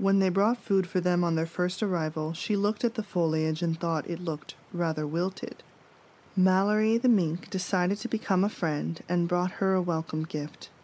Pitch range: 160-195 Hz